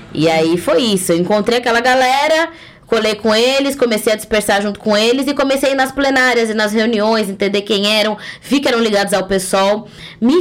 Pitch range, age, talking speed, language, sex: 175-235 Hz, 10-29, 210 wpm, Portuguese, female